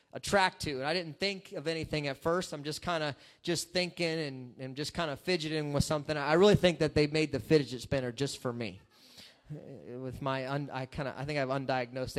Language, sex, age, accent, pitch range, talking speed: English, male, 30-49, American, 135-170 Hz, 230 wpm